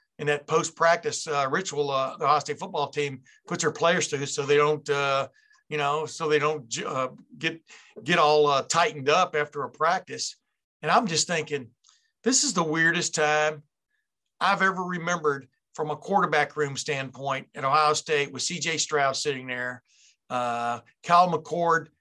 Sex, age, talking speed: male, 60-79, 165 wpm